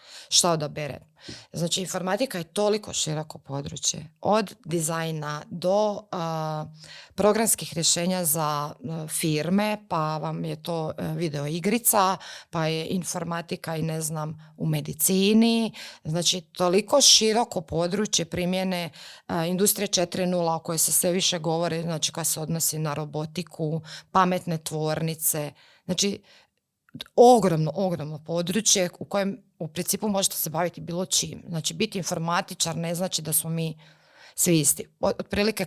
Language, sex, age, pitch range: Croatian, female, 30-49, 160-200 Hz